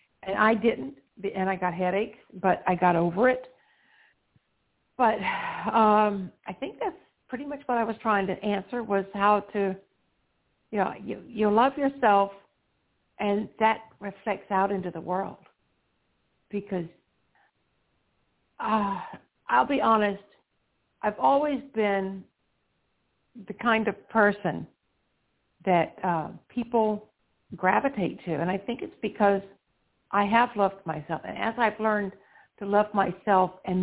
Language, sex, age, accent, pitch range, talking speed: English, female, 60-79, American, 190-230 Hz, 135 wpm